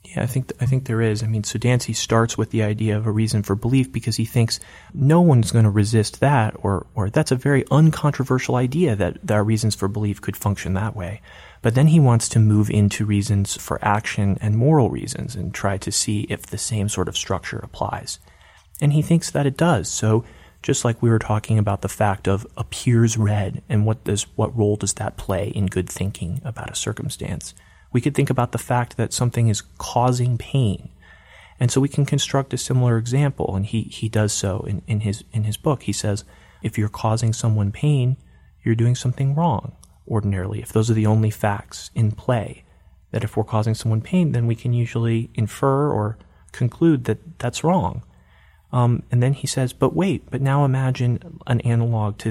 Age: 30-49